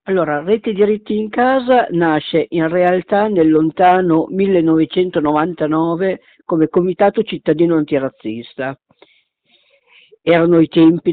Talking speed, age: 95 wpm, 50-69